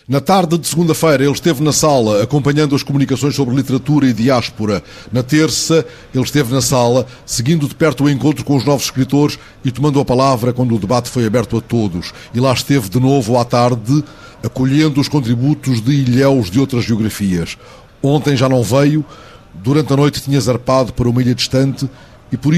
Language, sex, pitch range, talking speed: Portuguese, male, 120-140 Hz, 190 wpm